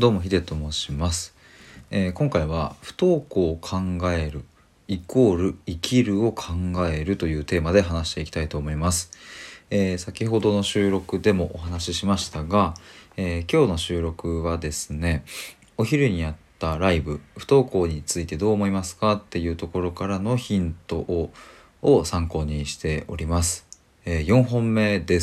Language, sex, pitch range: Japanese, male, 80-100 Hz